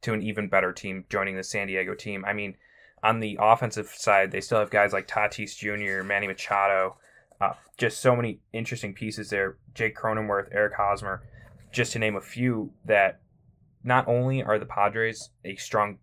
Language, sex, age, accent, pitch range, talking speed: English, male, 20-39, American, 100-115 Hz, 185 wpm